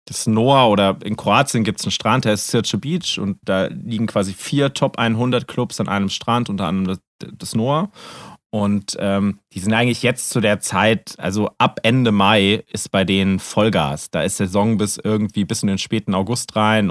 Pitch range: 105-125 Hz